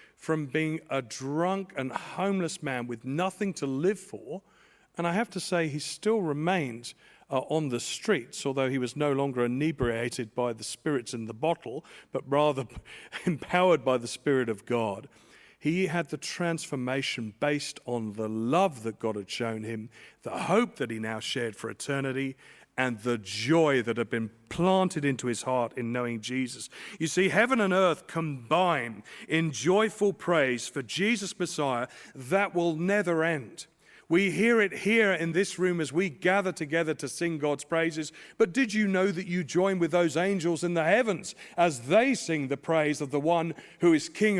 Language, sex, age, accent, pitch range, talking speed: English, male, 40-59, British, 130-180 Hz, 180 wpm